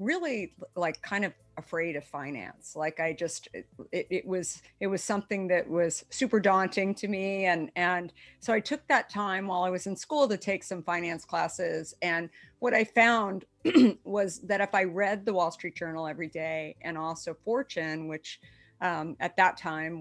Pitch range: 160-195 Hz